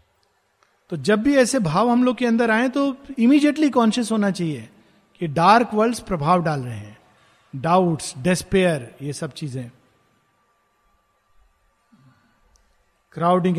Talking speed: 125 wpm